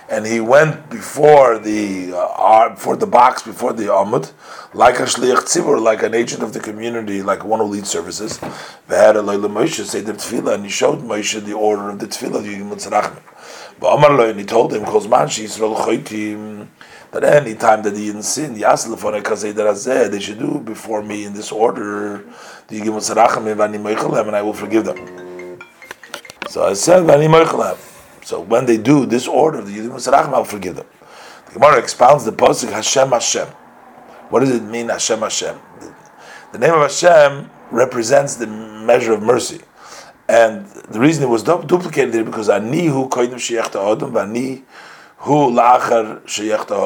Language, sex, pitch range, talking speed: English, male, 105-120 Hz, 175 wpm